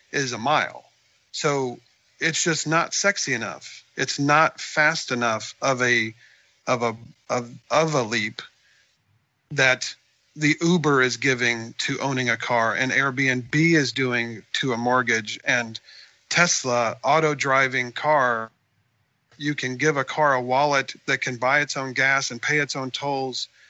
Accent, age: American, 40-59